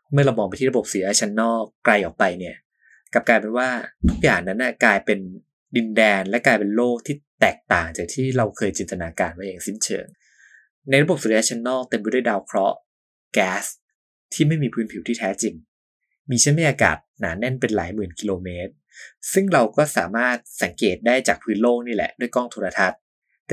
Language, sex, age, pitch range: Thai, male, 20-39, 105-135 Hz